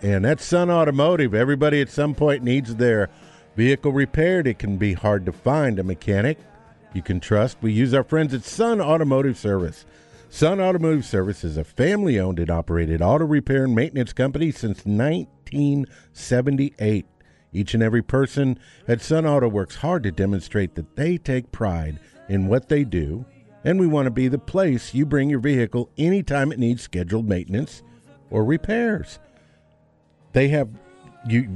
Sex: male